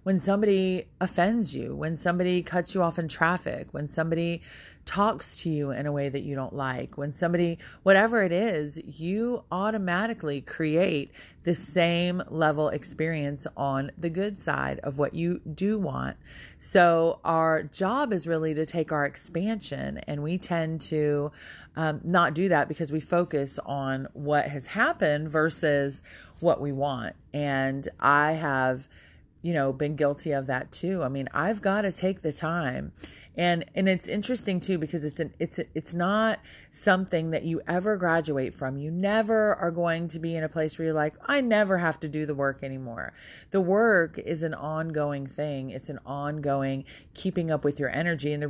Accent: American